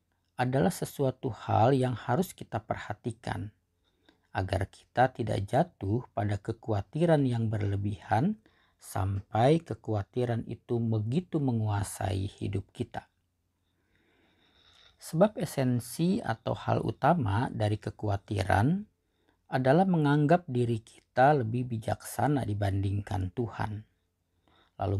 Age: 50-69